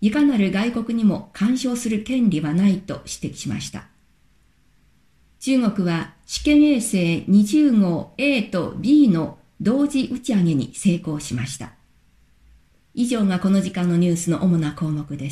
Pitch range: 165-225 Hz